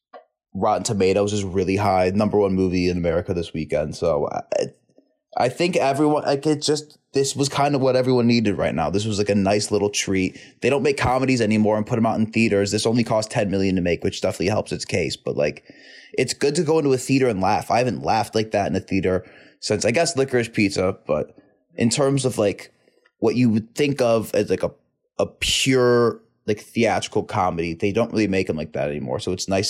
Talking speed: 225 wpm